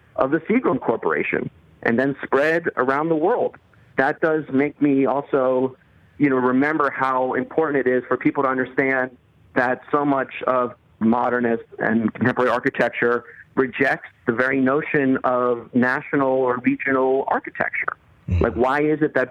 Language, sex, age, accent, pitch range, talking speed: English, male, 40-59, American, 125-145 Hz, 150 wpm